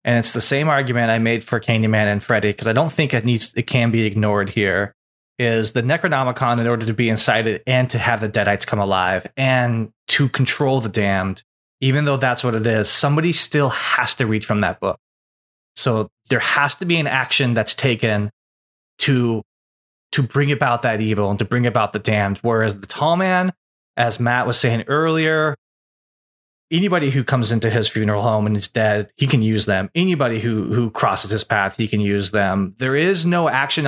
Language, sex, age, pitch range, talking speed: English, male, 20-39, 110-145 Hz, 200 wpm